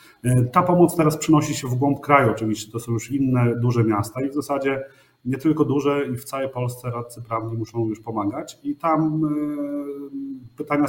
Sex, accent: male, native